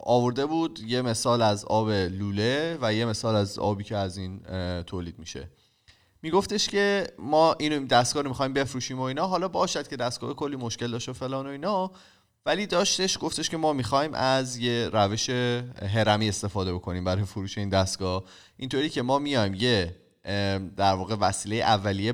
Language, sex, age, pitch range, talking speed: Persian, male, 30-49, 100-130 Hz, 165 wpm